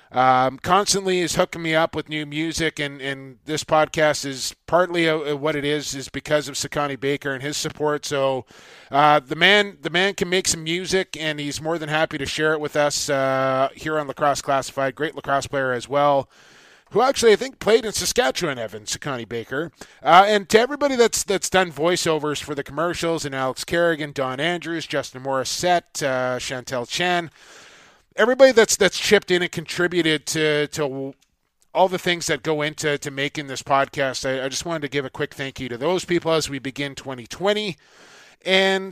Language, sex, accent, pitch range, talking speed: English, male, American, 140-175 Hz, 195 wpm